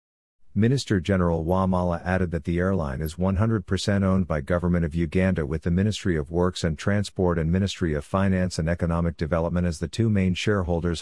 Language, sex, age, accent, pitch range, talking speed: English, male, 50-69, American, 85-100 Hz, 175 wpm